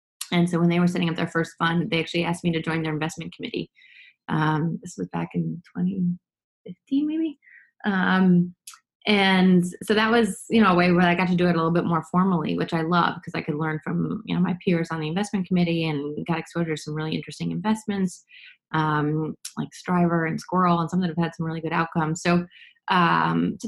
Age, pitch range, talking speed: 20-39, 165-205 Hz, 220 wpm